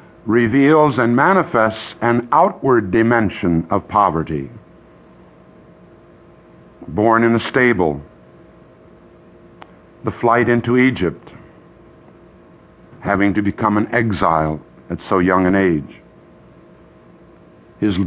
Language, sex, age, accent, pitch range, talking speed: English, male, 60-79, American, 95-120 Hz, 90 wpm